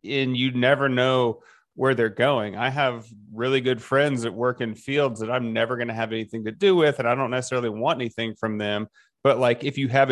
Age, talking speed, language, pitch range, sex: 30-49, 230 wpm, English, 110-135 Hz, male